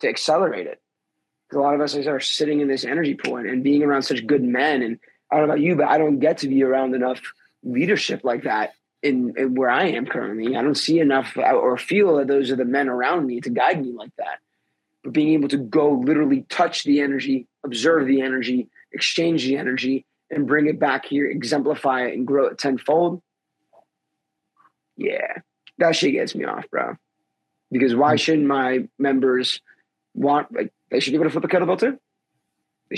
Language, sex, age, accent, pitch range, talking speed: English, male, 30-49, American, 135-165 Hz, 200 wpm